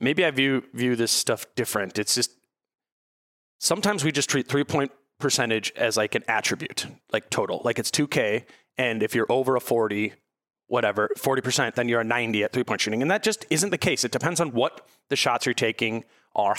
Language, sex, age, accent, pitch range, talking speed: English, male, 30-49, American, 120-145 Hz, 210 wpm